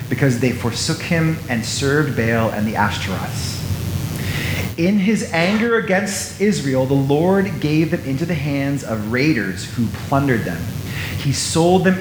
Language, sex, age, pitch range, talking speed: English, male, 30-49, 120-165 Hz, 150 wpm